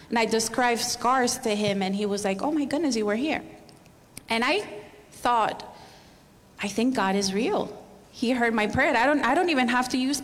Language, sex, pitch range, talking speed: English, female, 210-250 Hz, 210 wpm